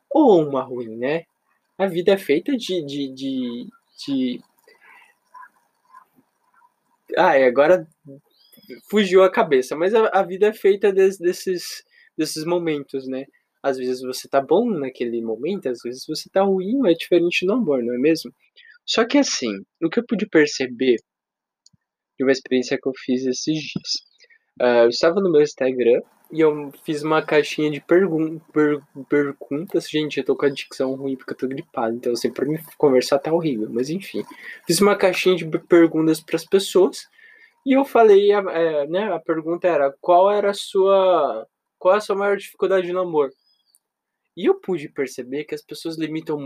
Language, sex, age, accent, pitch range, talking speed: Portuguese, male, 20-39, Brazilian, 135-205 Hz, 175 wpm